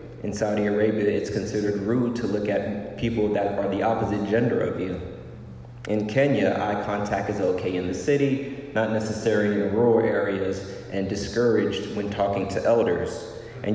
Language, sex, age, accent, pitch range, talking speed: English, male, 30-49, American, 100-115 Hz, 170 wpm